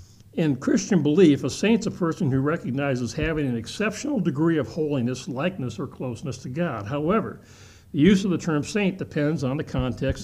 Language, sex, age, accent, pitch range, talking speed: English, male, 60-79, American, 125-170 Hz, 190 wpm